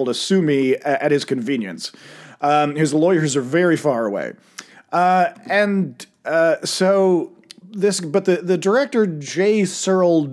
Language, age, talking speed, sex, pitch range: English, 40-59, 140 wpm, male, 145-185 Hz